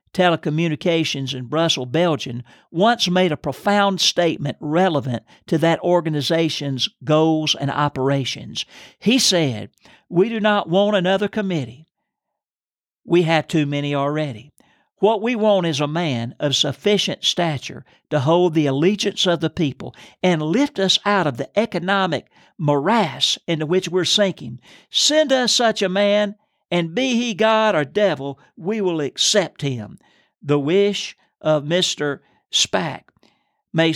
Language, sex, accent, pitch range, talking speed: English, male, American, 150-200 Hz, 140 wpm